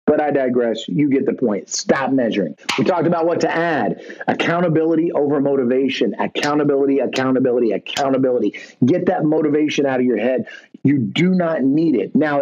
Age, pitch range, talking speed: 30-49, 140-190 Hz, 165 wpm